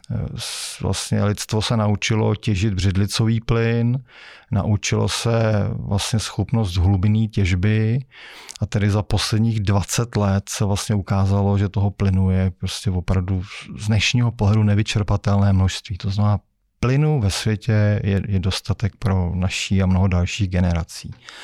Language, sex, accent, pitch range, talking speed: Czech, male, native, 100-120 Hz, 130 wpm